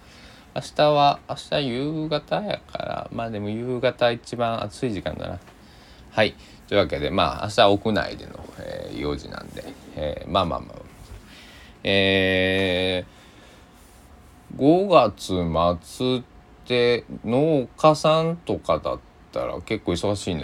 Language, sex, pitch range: Japanese, male, 80-105 Hz